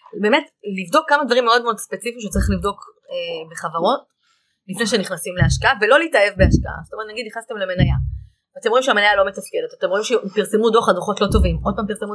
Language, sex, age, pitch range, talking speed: Hebrew, female, 20-39, 185-250 Hz, 185 wpm